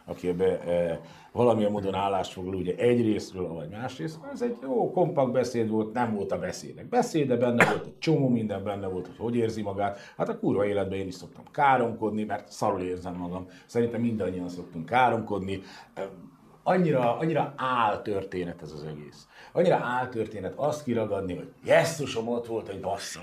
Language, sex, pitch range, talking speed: Hungarian, male, 90-120 Hz, 165 wpm